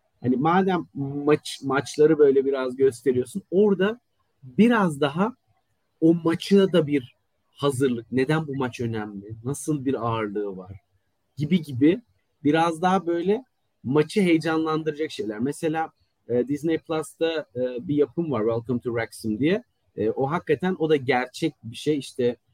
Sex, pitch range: male, 125-170 Hz